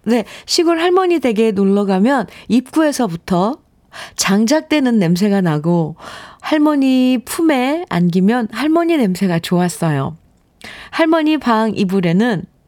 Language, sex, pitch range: Korean, female, 165-235 Hz